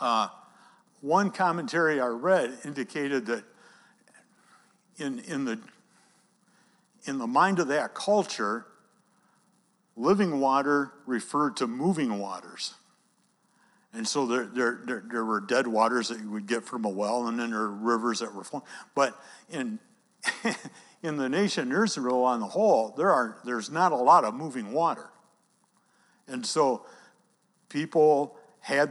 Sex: male